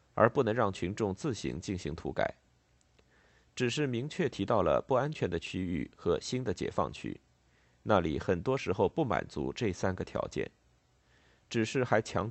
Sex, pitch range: male, 80-125 Hz